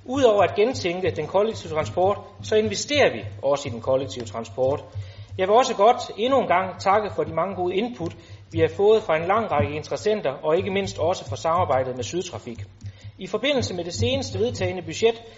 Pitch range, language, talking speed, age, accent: 135-215 Hz, Danish, 195 wpm, 30-49, native